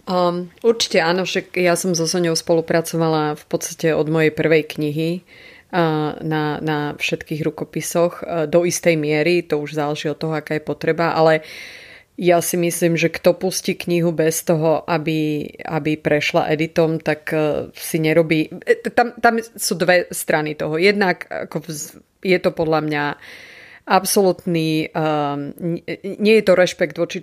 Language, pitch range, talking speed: Slovak, 155-175 Hz, 155 wpm